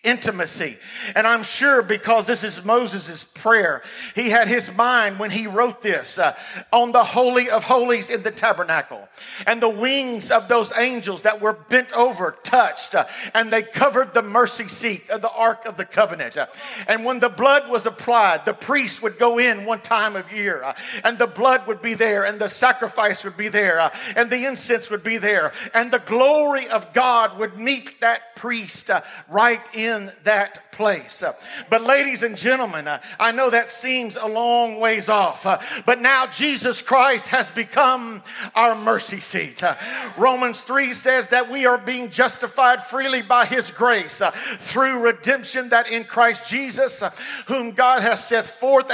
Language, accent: English, American